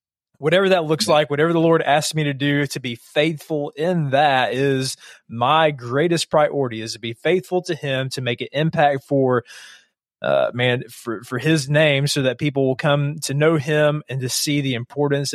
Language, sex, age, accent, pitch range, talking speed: English, male, 20-39, American, 125-150 Hz, 195 wpm